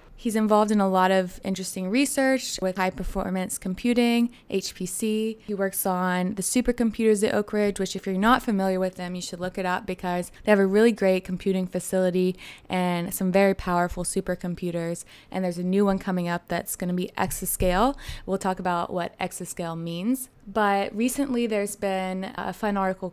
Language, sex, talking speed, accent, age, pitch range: English, female, 180 wpm, American, 20-39, 180-205 Hz